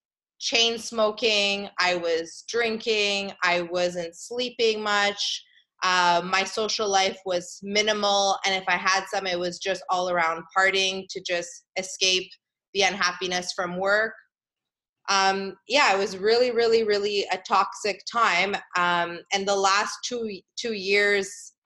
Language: English